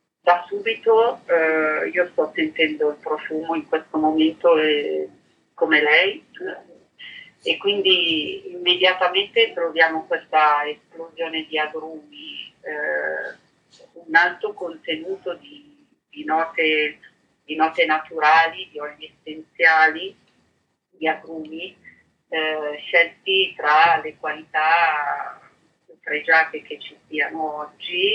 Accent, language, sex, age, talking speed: native, Italian, female, 40-59, 100 wpm